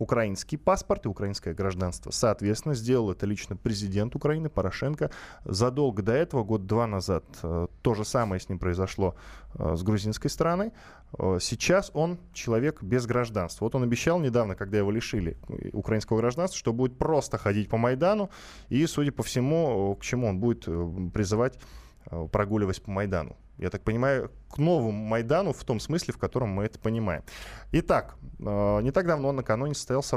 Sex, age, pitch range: male, 20-39, 100-135 Hz